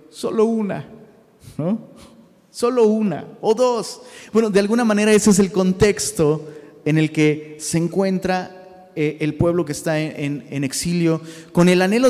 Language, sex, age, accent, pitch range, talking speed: Spanish, male, 30-49, Mexican, 150-215 Hz, 160 wpm